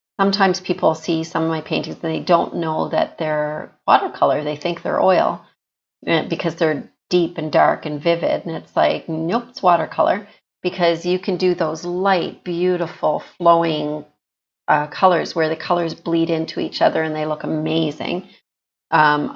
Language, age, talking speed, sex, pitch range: English, 40-59, 165 wpm, female, 150-175 Hz